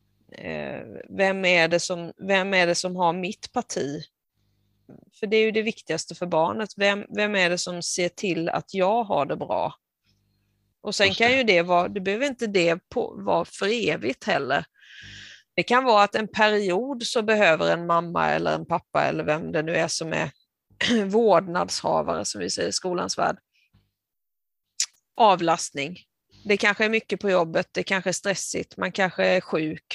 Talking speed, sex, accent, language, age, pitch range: 165 wpm, female, native, Swedish, 30-49, 170-215 Hz